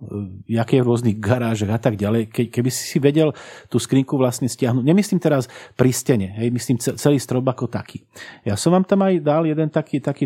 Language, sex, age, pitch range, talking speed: Slovak, male, 40-59, 115-135 Hz, 205 wpm